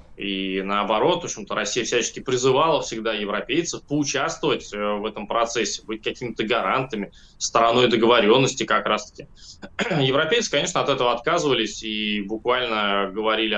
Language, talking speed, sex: Russian, 125 wpm, male